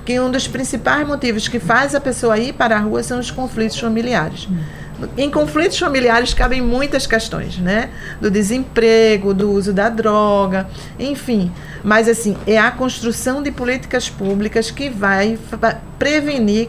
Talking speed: 145 wpm